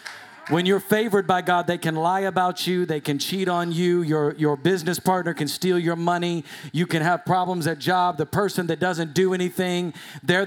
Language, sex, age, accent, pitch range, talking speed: English, male, 40-59, American, 160-190 Hz, 205 wpm